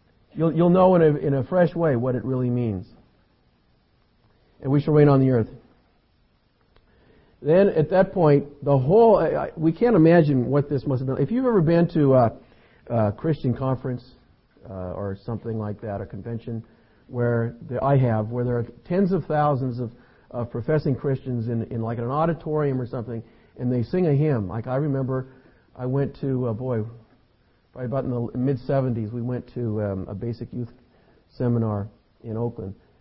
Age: 50-69